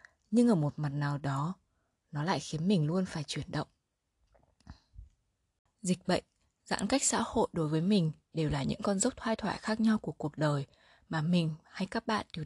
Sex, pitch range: female, 150-210 Hz